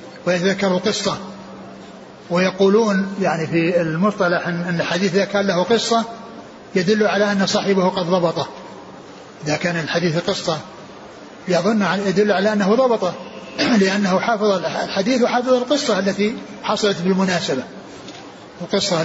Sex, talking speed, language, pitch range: male, 115 wpm, Arabic, 175-210 Hz